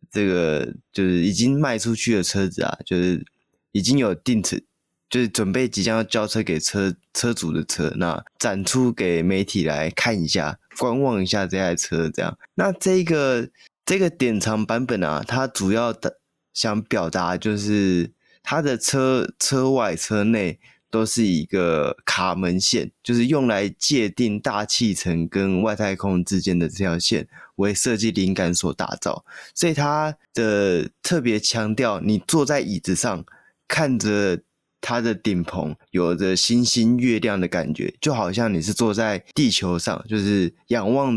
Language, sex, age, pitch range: Chinese, male, 20-39, 90-115 Hz